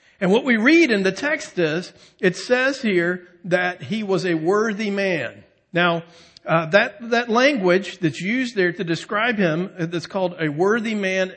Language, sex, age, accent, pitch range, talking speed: English, male, 50-69, American, 175-225 Hz, 175 wpm